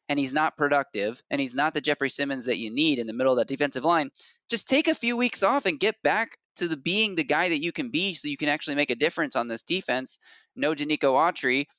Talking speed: 260 wpm